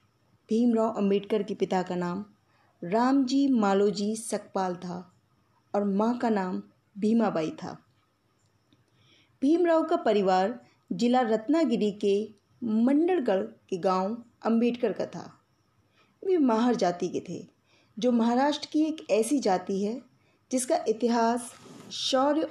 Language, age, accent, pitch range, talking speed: Hindi, 20-39, native, 180-245 Hz, 115 wpm